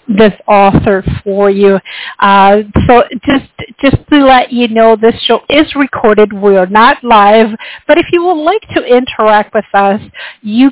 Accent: American